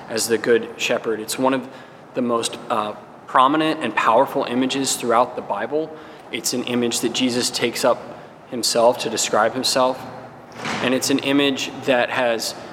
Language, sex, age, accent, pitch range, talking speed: English, male, 20-39, American, 115-135 Hz, 175 wpm